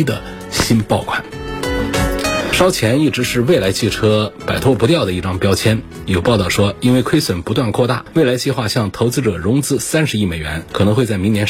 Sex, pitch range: male, 95-130 Hz